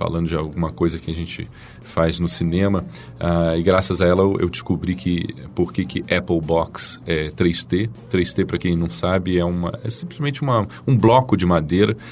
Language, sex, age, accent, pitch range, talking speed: Portuguese, male, 40-59, Brazilian, 90-115 Hz, 190 wpm